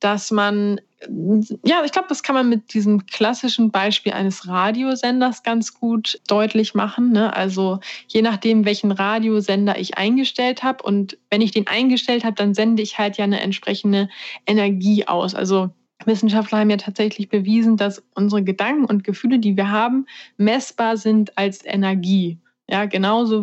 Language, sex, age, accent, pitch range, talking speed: German, female, 20-39, German, 190-225 Hz, 155 wpm